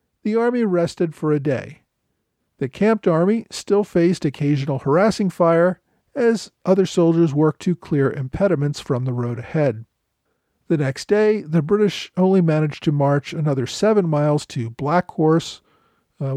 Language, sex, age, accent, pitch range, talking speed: English, male, 50-69, American, 140-185 Hz, 150 wpm